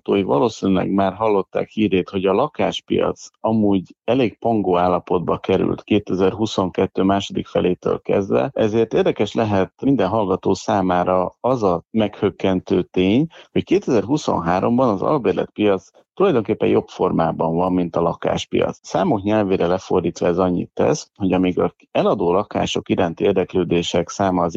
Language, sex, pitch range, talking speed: Hungarian, male, 90-105 Hz, 125 wpm